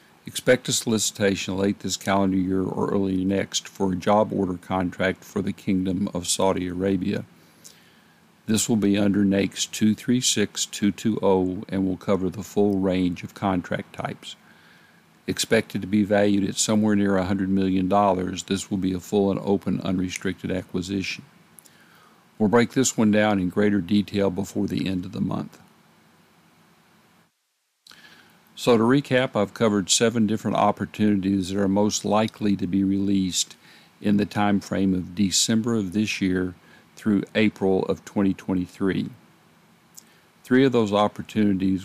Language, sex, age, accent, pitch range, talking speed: English, male, 50-69, American, 95-105 Hz, 145 wpm